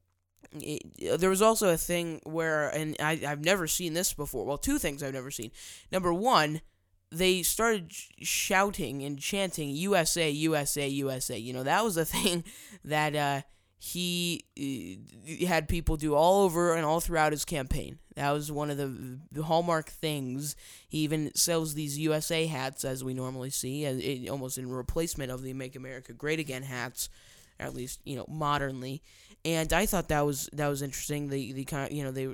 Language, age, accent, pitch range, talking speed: English, 10-29, American, 130-170 Hz, 175 wpm